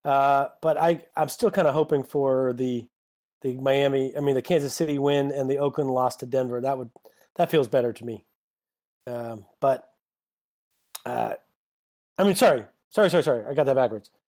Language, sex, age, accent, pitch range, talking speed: English, male, 30-49, American, 125-150 Hz, 185 wpm